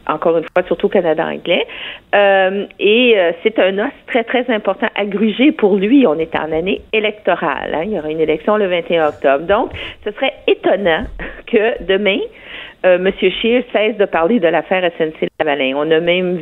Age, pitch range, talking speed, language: 50-69, 160-210 Hz, 190 wpm, French